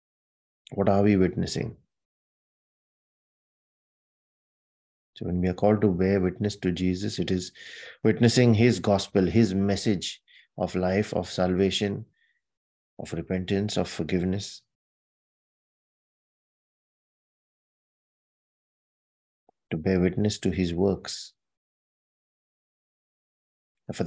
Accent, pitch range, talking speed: Indian, 90-105 Hz, 90 wpm